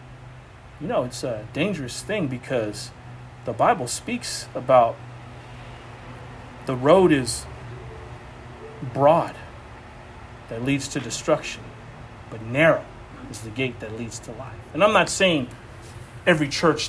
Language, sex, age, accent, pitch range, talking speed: English, male, 40-59, American, 120-175 Hz, 120 wpm